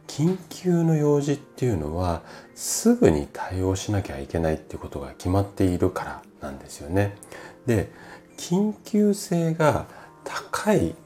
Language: Japanese